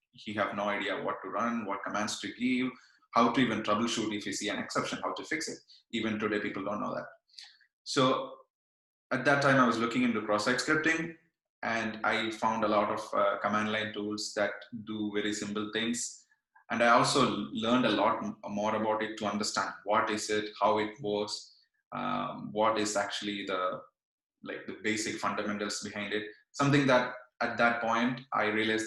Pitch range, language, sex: 105-120 Hz, English, male